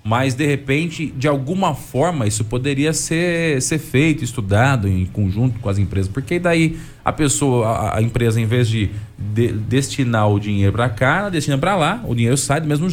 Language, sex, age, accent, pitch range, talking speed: Portuguese, male, 20-39, Brazilian, 105-140 Hz, 180 wpm